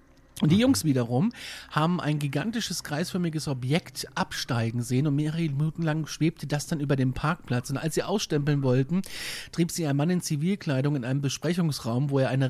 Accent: German